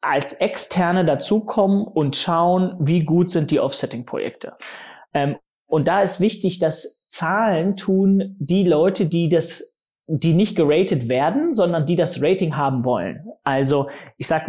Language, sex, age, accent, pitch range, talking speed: German, male, 30-49, German, 150-185 Hz, 145 wpm